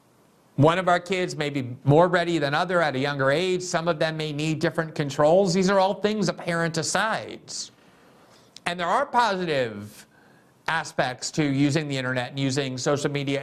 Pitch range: 140-185 Hz